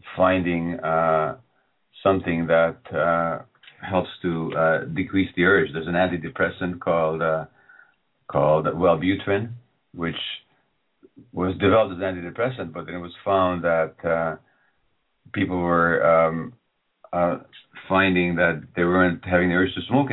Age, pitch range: 50-69, 80-95 Hz